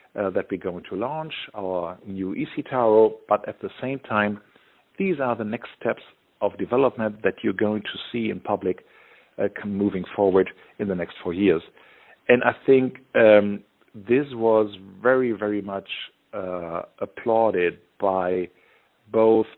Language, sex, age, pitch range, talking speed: Swedish, male, 50-69, 95-115 Hz, 150 wpm